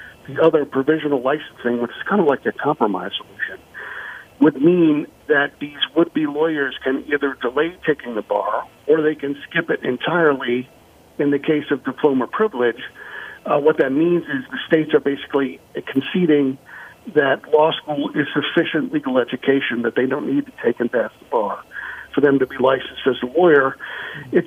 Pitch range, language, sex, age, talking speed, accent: 130-155 Hz, English, male, 50-69, 175 wpm, American